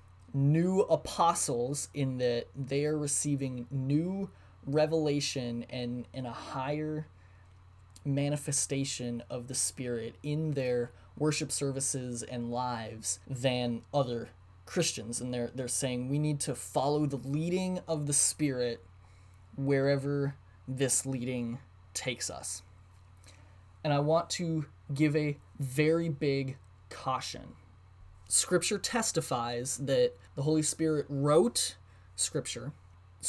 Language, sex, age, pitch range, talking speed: English, male, 10-29, 95-150 Hz, 110 wpm